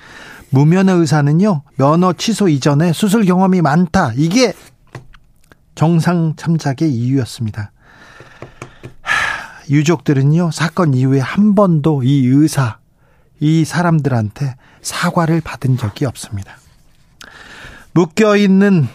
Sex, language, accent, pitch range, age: male, Korean, native, 140-185 Hz, 40-59